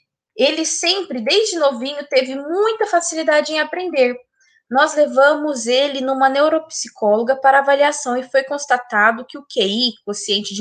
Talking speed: 135 wpm